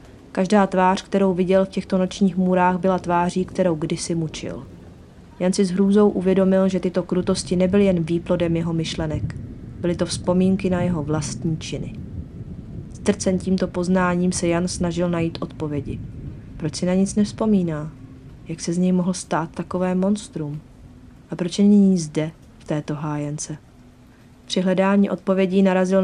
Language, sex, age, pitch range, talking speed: Czech, female, 30-49, 165-190 Hz, 150 wpm